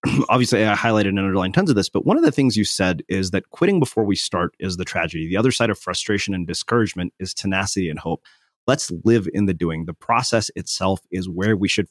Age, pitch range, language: 30-49, 95-115 Hz, English